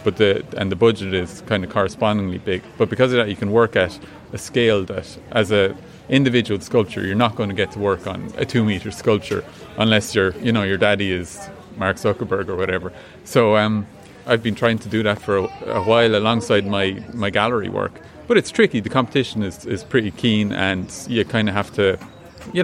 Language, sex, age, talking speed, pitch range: English, male, 30-49, 215 wpm, 100-115 Hz